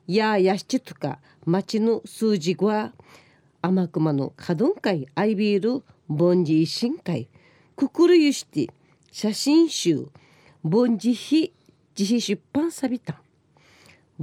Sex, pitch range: female, 155-220 Hz